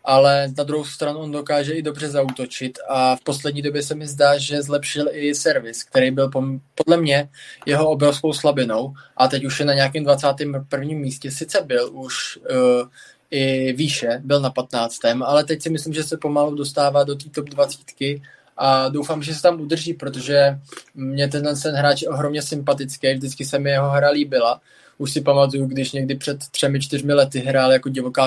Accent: native